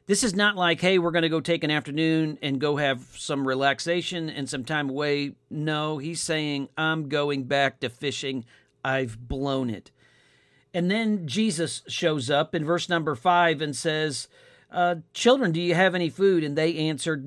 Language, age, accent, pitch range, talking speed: English, 50-69, American, 140-170 Hz, 185 wpm